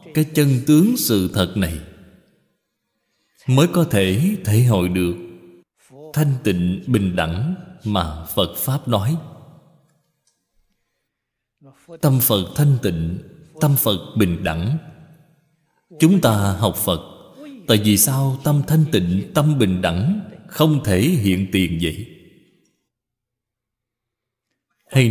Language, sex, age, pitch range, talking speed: Vietnamese, male, 20-39, 100-160 Hz, 110 wpm